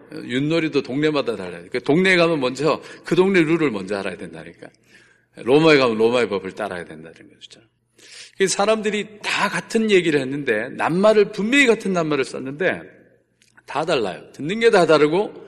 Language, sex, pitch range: Korean, male, 135-190 Hz